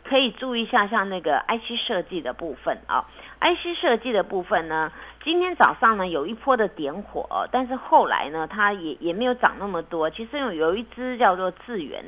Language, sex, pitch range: Chinese, female, 170-245 Hz